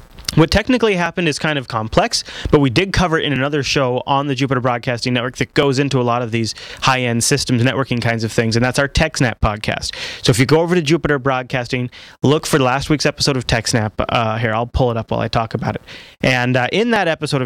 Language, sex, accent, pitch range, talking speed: English, male, American, 120-155 Hz, 235 wpm